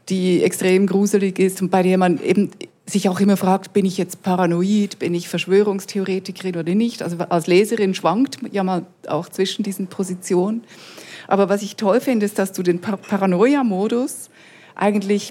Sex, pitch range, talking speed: female, 175-200 Hz, 175 wpm